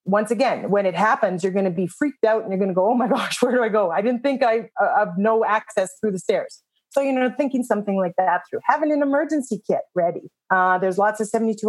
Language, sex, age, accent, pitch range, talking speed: English, female, 30-49, American, 195-250 Hz, 265 wpm